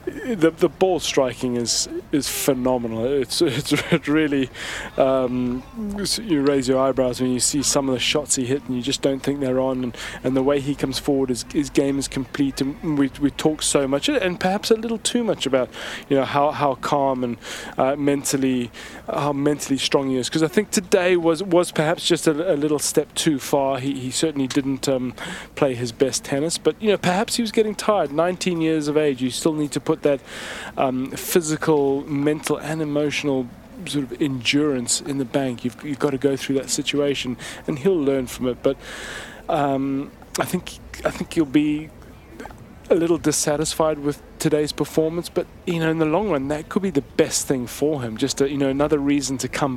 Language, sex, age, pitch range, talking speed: English, male, 20-39, 135-160 Hz, 210 wpm